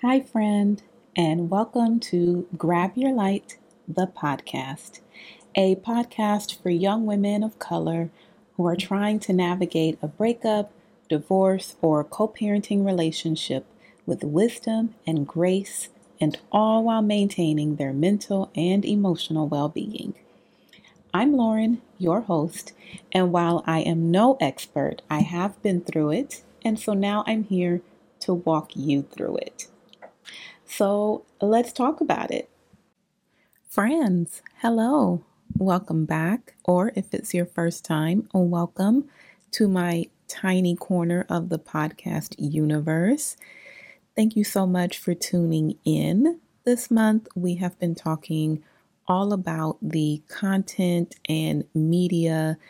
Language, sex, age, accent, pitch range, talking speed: English, female, 30-49, American, 165-210 Hz, 125 wpm